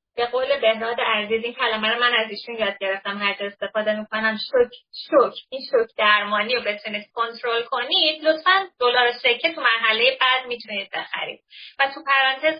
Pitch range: 225-295 Hz